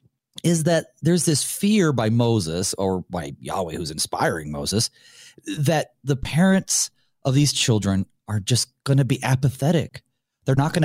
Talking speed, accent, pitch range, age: 155 wpm, American, 115-155 Hz, 40-59